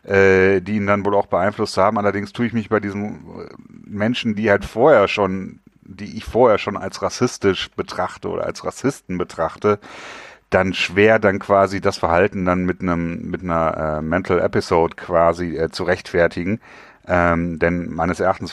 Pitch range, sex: 85-100 Hz, male